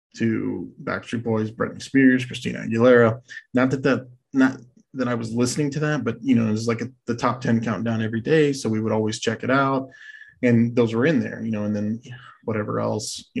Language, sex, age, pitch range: English, male, 20-39, 110-125 Hz